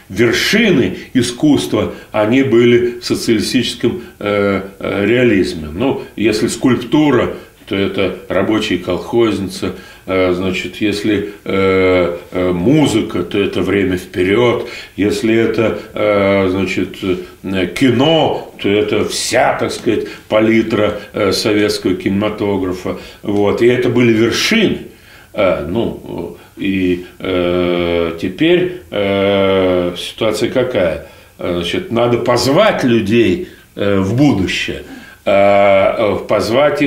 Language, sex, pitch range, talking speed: Russian, male, 95-125 Hz, 90 wpm